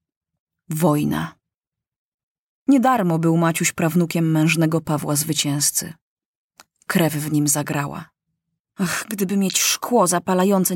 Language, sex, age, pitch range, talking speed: Polish, female, 20-39, 155-195 Hz, 100 wpm